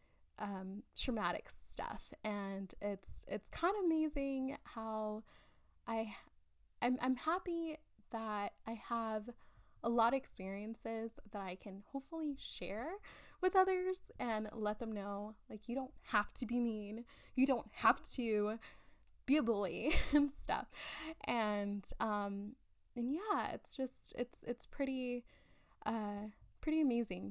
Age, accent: 10-29, American